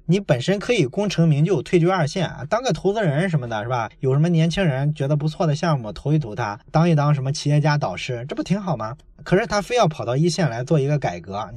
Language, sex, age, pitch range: Chinese, male, 20-39, 135-170 Hz